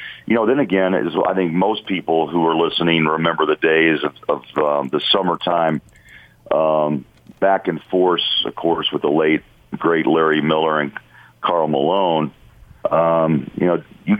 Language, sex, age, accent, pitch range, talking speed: English, male, 50-69, American, 80-95 Hz, 160 wpm